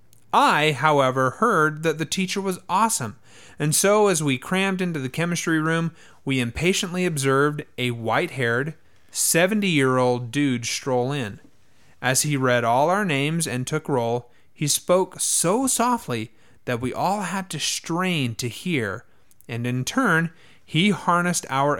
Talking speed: 145 wpm